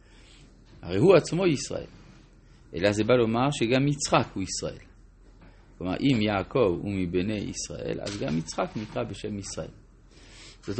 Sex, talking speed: male, 140 wpm